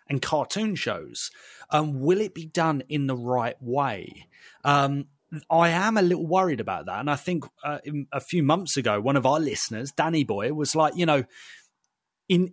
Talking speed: 185 wpm